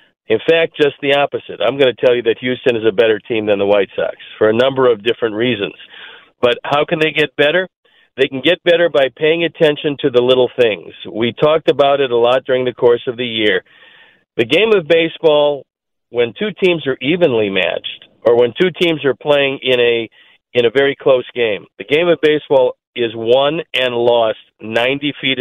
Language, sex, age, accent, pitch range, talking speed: English, male, 50-69, American, 125-170 Hz, 205 wpm